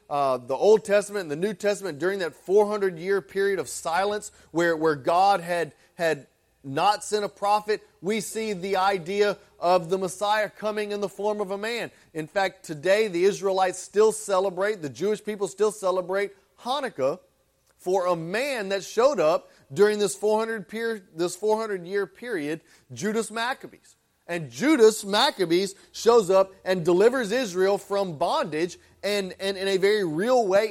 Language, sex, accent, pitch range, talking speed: English, male, American, 155-205 Hz, 155 wpm